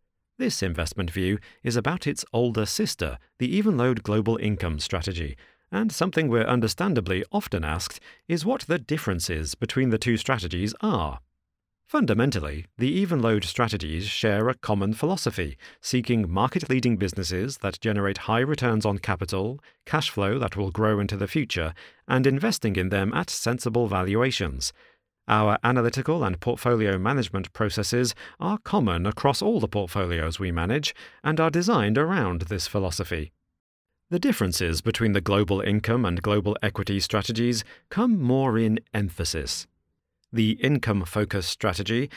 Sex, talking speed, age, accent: male, 140 wpm, 40-59, British